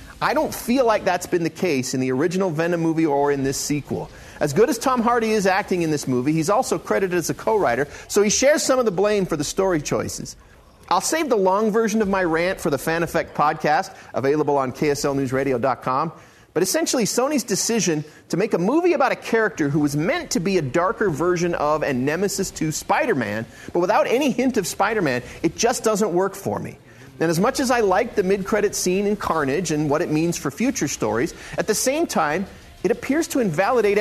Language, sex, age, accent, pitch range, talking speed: English, male, 40-59, American, 150-215 Hz, 215 wpm